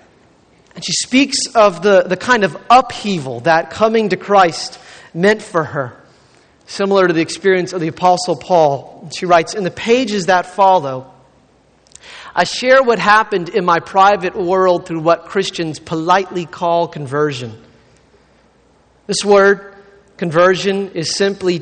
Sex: male